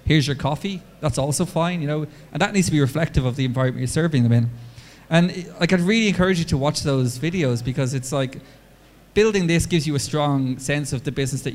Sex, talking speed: male, 230 wpm